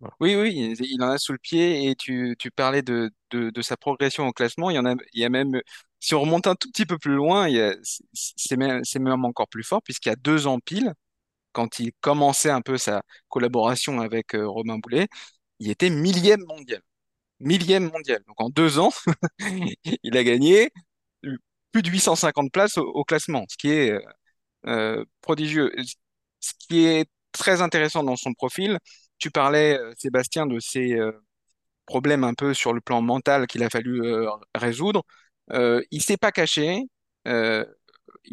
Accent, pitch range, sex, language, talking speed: French, 125-170 Hz, male, French, 190 wpm